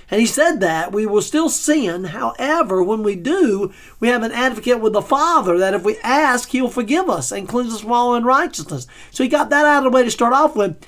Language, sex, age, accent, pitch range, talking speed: English, male, 40-59, American, 205-265 Hz, 245 wpm